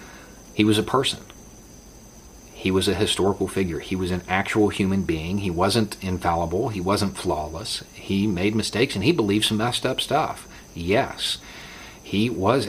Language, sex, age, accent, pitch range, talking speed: English, male, 40-59, American, 90-110 Hz, 160 wpm